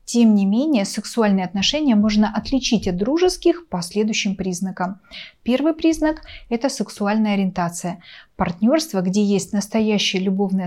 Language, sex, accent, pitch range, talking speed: Russian, female, native, 190-235 Hz, 125 wpm